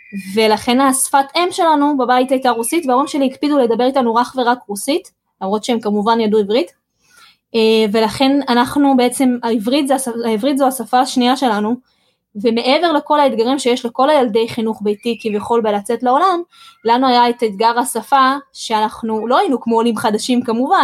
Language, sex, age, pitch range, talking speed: Hebrew, female, 20-39, 225-260 Hz, 150 wpm